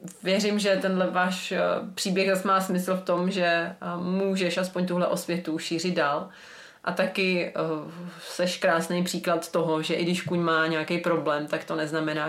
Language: Czech